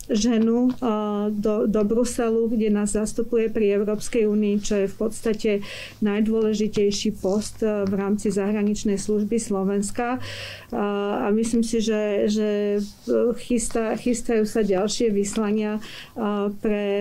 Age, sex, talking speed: 40-59, female, 115 wpm